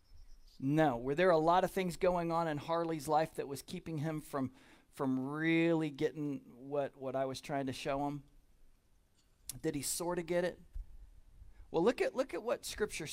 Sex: male